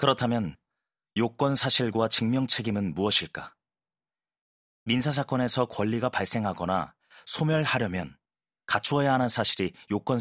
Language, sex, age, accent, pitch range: Korean, male, 30-49, native, 95-125 Hz